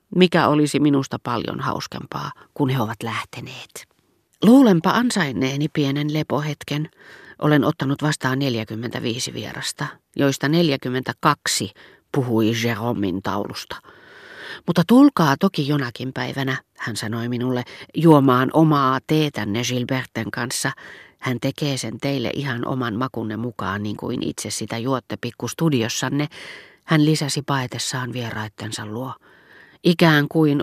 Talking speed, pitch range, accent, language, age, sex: 115 wpm, 115-150 Hz, native, Finnish, 40-59, female